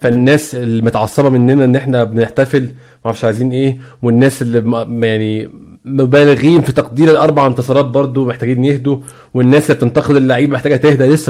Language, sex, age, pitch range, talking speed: Arabic, male, 20-39, 120-155 Hz, 145 wpm